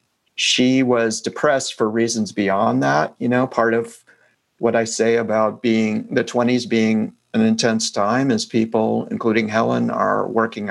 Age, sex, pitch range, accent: 50-69, male, 110-120 Hz, American